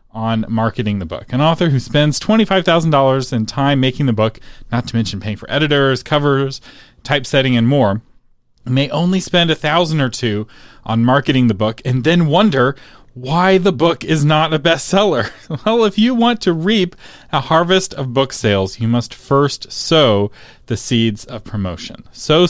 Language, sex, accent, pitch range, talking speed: English, male, American, 115-155 Hz, 175 wpm